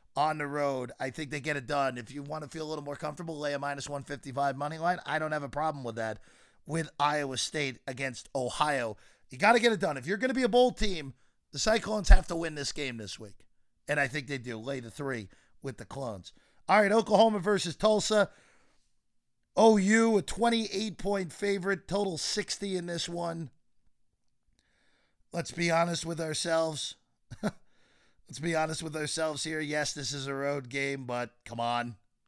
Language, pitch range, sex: English, 125-170 Hz, male